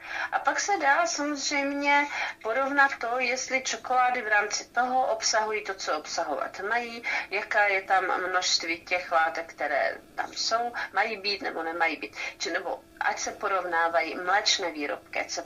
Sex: female